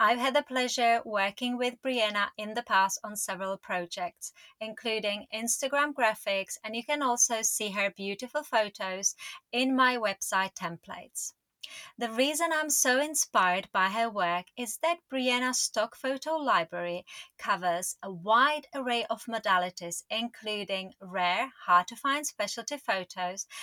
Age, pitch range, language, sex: 30-49, 195-260 Hz, English, female